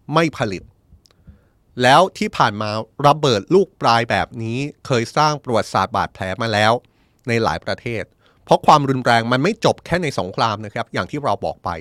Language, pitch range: Thai, 105-145 Hz